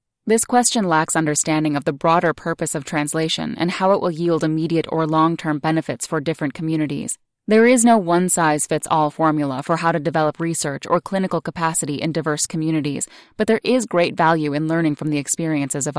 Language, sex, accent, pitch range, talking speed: English, female, American, 150-180 Hz, 185 wpm